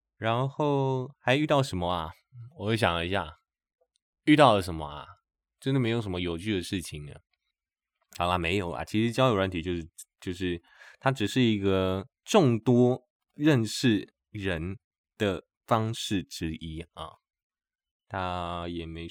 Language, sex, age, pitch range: Chinese, male, 20-39, 85-115 Hz